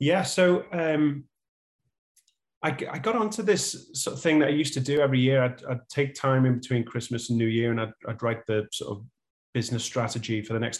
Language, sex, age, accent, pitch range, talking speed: English, male, 30-49, British, 115-135 Hz, 220 wpm